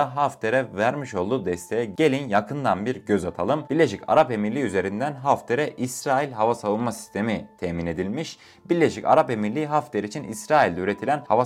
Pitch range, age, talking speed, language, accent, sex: 100-145 Hz, 30-49, 145 wpm, Turkish, native, male